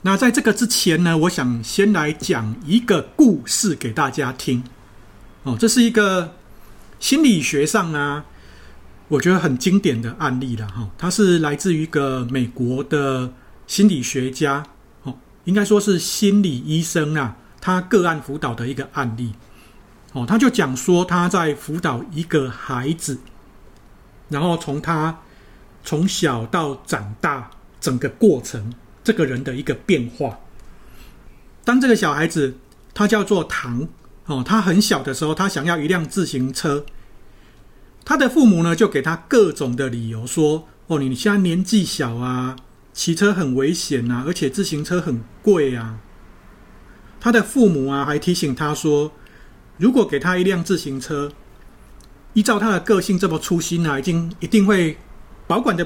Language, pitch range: Chinese, 130-185 Hz